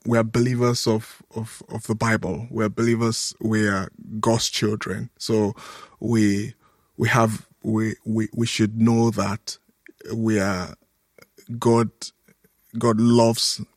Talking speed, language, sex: 130 wpm, English, male